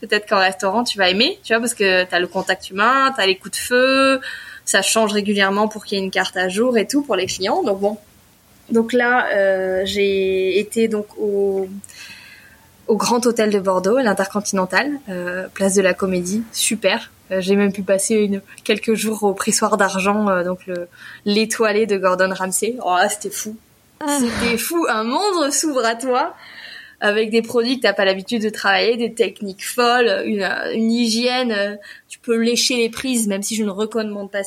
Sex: female